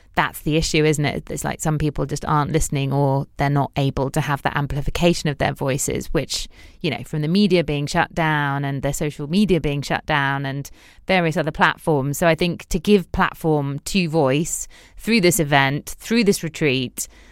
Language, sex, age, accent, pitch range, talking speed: English, female, 20-39, British, 150-175 Hz, 200 wpm